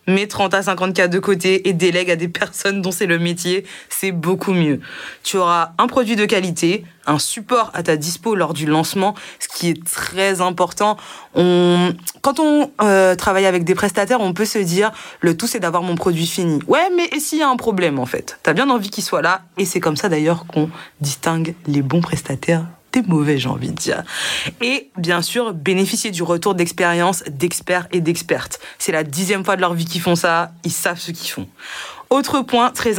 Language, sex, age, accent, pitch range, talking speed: French, female, 20-39, French, 170-210 Hz, 215 wpm